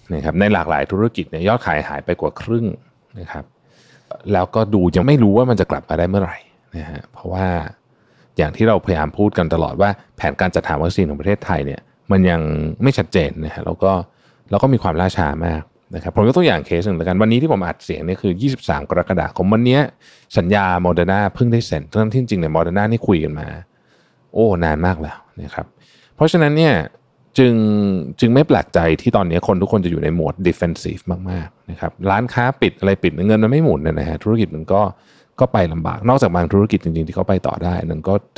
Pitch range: 85-110 Hz